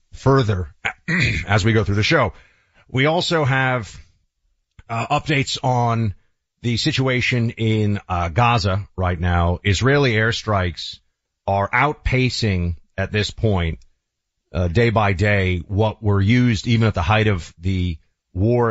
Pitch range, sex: 85-110 Hz, male